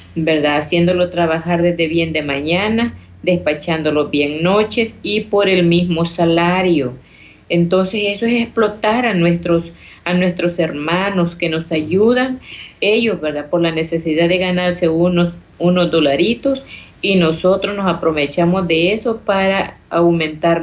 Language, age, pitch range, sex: Spanish, 40-59, 165-205 Hz, female